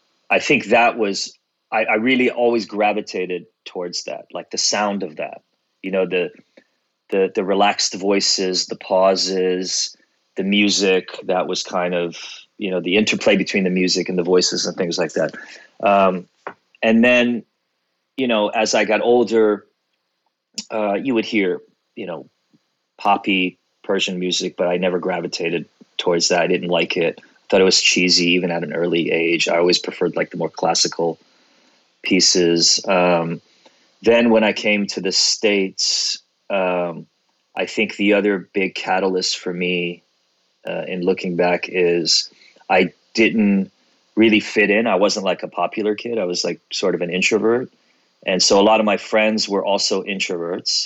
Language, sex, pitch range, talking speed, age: English, male, 90-105 Hz, 165 wpm, 30-49